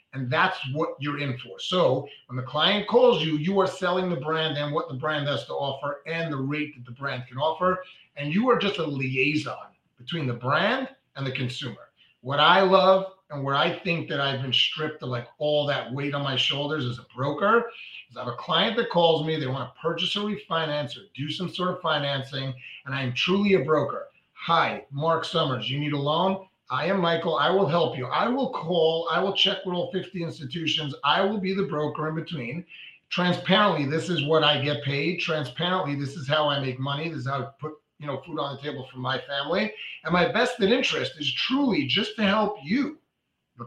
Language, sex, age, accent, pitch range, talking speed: English, male, 30-49, American, 140-180 Hz, 225 wpm